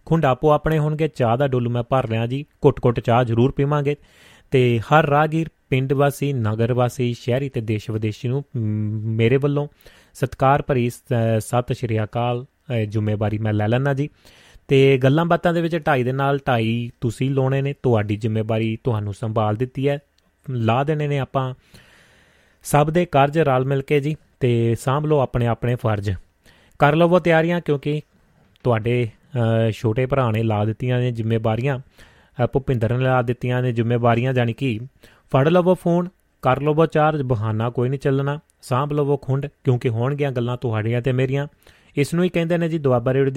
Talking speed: 150 wpm